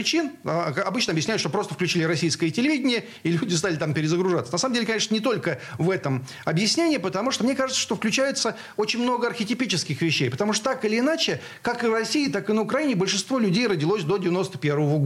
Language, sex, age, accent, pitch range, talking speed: Russian, male, 40-59, native, 170-255 Hz, 200 wpm